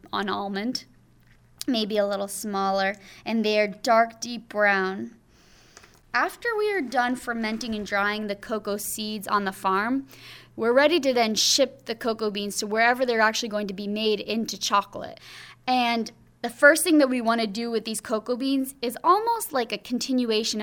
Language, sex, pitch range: English, female, 210-255 Hz